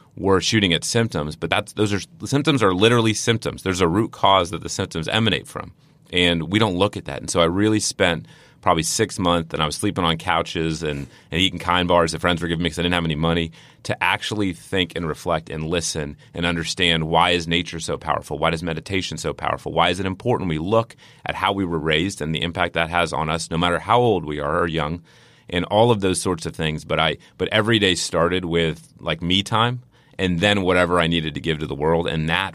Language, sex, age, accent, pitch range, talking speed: English, male, 30-49, American, 80-95 Hz, 245 wpm